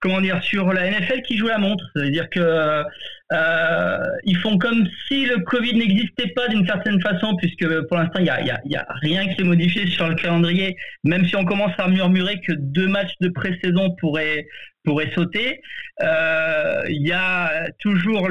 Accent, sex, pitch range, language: French, male, 160-200 Hz, French